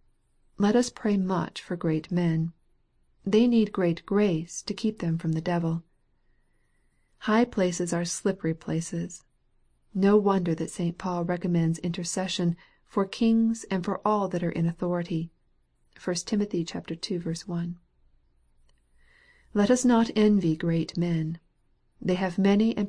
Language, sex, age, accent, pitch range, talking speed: English, female, 40-59, American, 170-205 Hz, 140 wpm